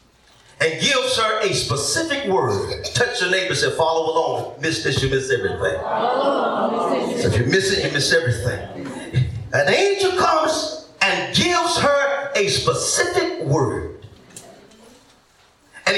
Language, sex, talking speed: English, male, 135 wpm